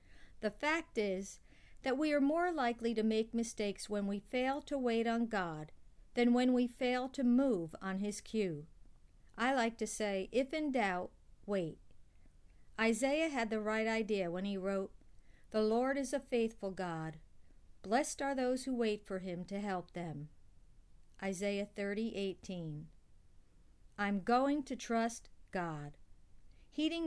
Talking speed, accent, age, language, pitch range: 150 wpm, American, 50-69, English, 190-255 Hz